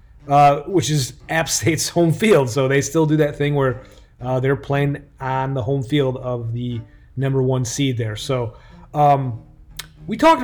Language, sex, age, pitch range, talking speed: English, male, 30-49, 130-155 Hz, 180 wpm